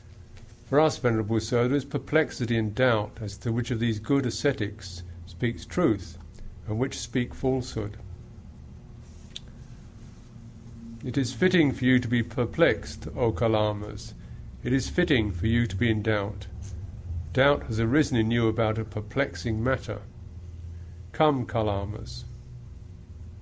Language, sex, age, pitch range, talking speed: English, male, 50-69, 110-130 Hz, 135 wpm